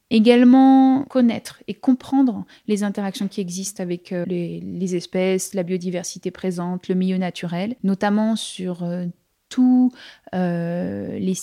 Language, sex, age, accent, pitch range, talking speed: French, female, 20-39, French, 185-225 Hz, 125 wpm